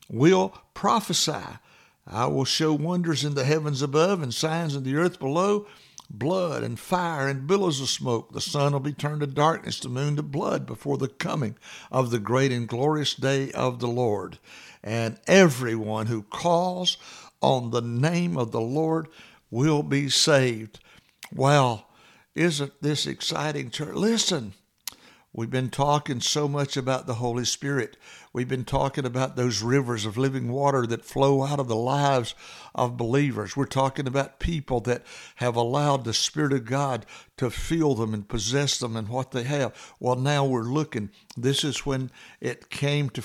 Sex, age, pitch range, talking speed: male, 60-79, 125-150 Hz, 170 wpm